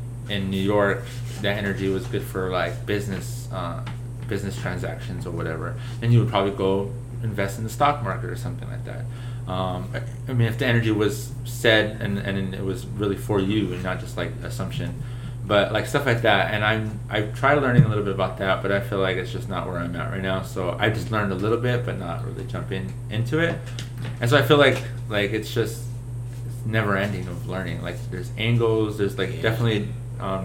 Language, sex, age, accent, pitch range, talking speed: English, male, 20-39, American, 105-120 Hz, 215 wpm